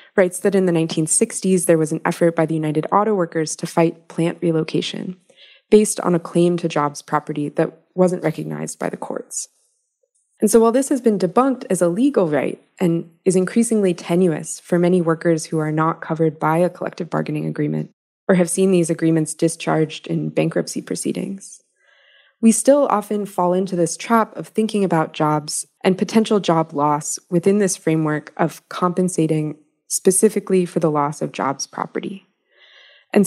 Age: 20-39